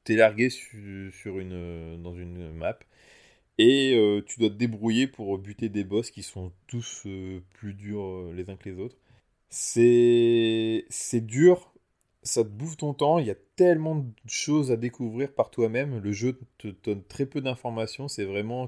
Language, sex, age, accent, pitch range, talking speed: French, male, 20-39, French, 95-120 Hz, 175 wpm